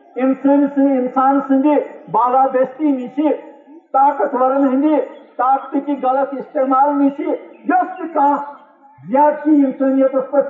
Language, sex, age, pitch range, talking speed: Urdu, male, 50-69, 250-335 Hz, 65 wpm